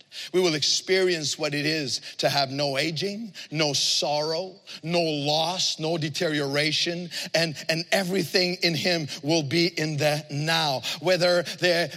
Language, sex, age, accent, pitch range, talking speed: English, male, 40-59, American, 160-260 Hz, 140 wpm